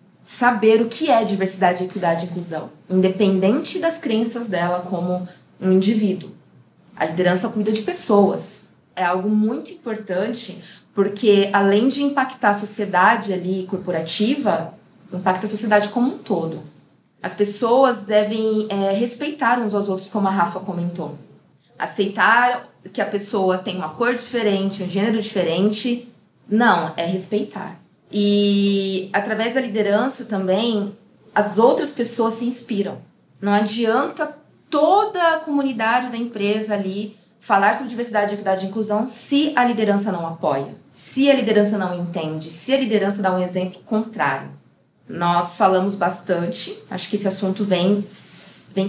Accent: Brazilian